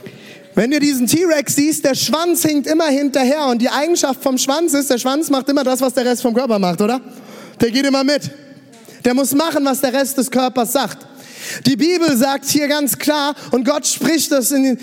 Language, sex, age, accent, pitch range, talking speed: German, male, 20-39, German, 255-300 Hz, 210 wpm